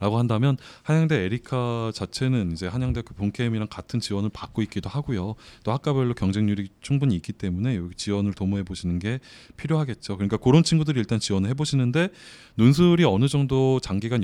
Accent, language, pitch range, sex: native, Korean, 90-130 Hz, male